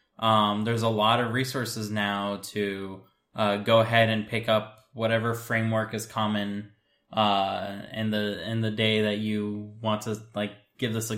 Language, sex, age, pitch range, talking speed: English, male, 10-29, 105-115 Hz, 170 wpm